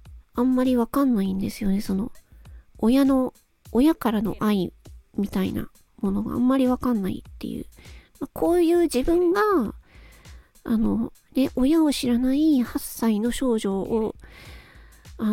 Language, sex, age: Japanese, female, 40-59